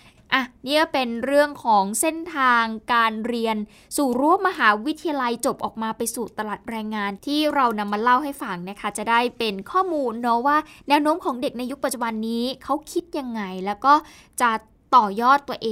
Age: 10-29